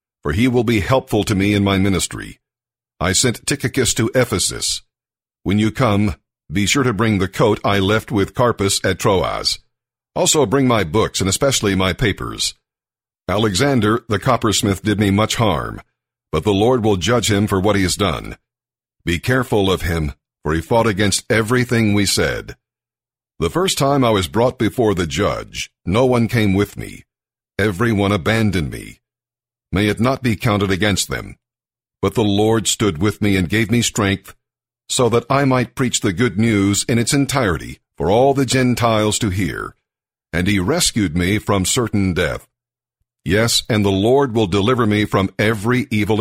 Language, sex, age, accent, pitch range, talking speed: English, male, 50-69, American, 100-125 Hz, 175 wpm